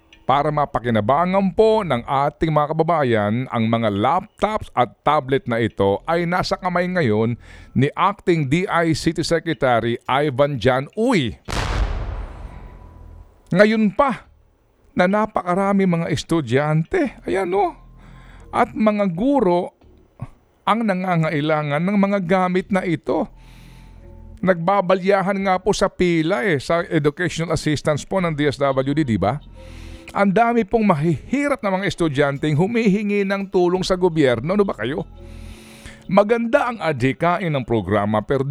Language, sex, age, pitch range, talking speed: Filipino, male, 50-69, 130-200 Hz, 120 wpm